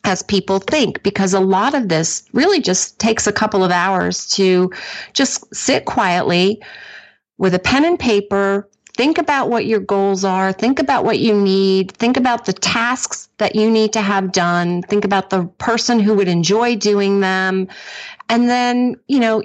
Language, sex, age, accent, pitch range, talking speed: English, female, 40-59, American, 185-240 Hz, 180 wpm